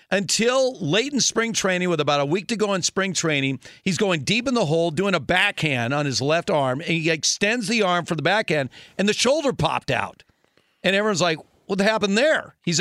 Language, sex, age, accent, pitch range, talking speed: English, male, 50-69, American, 155-215 Hz, 220 wpm